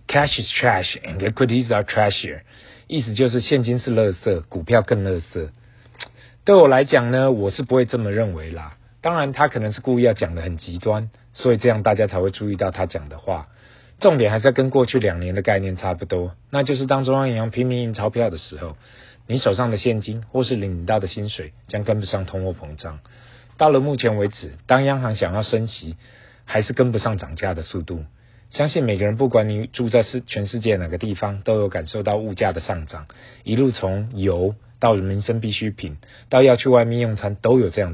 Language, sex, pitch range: Chinese, male, 95-125 Hz